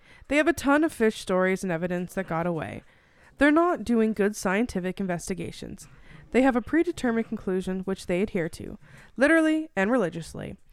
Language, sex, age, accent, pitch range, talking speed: English, female, 20-39, American, 185-260 Hz, 170 wpm